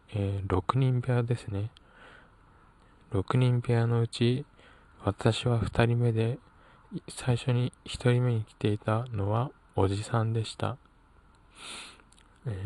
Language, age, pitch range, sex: Japanese, 20-39, 100-120 Hz, male